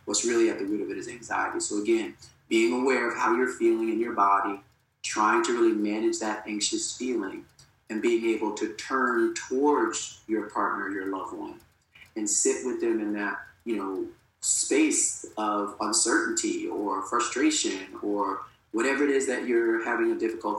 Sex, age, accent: male, 30-49, American